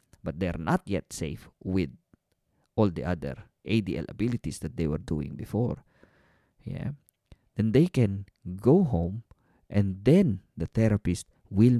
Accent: Filipino